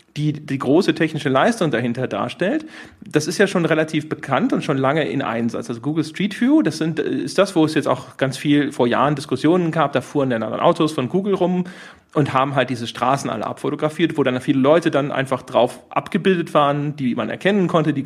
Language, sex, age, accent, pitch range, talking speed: German, male, 40-59, German, 135-175 Hz, 210 wpm